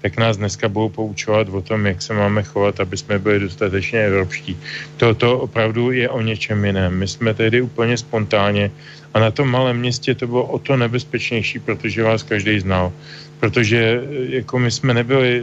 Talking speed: 180 wpm